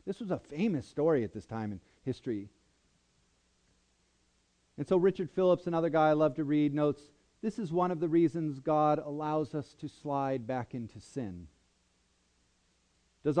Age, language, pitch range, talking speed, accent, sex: 40-59, English, 110-175 Hz, 160 wpm, American, male